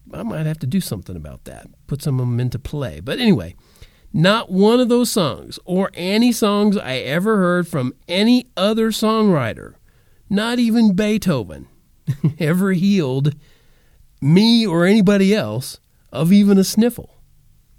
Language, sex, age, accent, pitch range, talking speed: English, male, 40-59, American, 115-170 Hz, 150 wpm